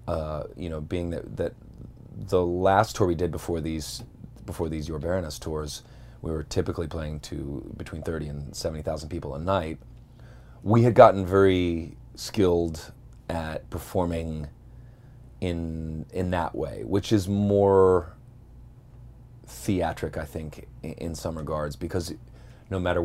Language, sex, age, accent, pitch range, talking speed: English, male, 30-49, American, 80-95 Hz, 140 wpm